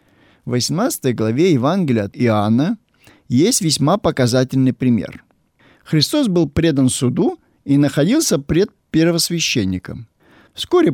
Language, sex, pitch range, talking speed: Russian, male, 115-165 Hz, 105 wpm